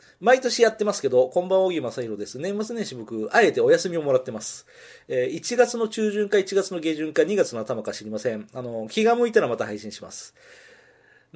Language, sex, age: Japanese, male, 40-59